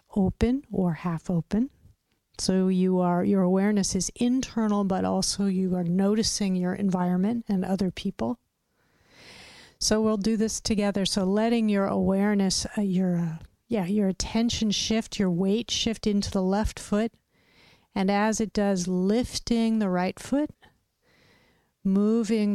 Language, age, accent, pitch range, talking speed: English, 50-69, American, 180-210 Hz, 140 wpm